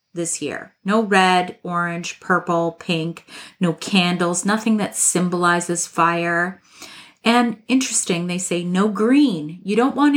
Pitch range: 180-225 Hz